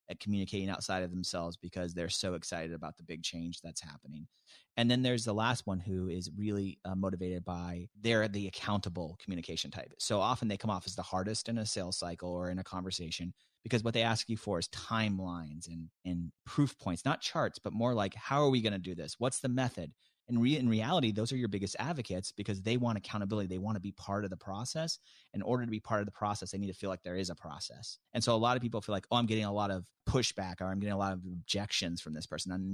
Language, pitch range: English, 90-110 Hz